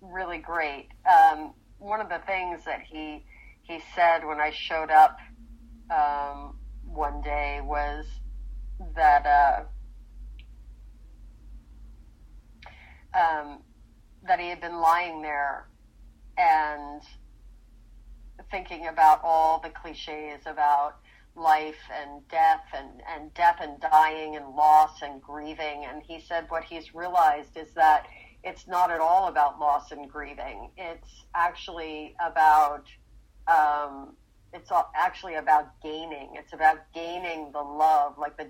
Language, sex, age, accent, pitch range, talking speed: English, female, 40-59, American, 145-165 Hz, 120 wpm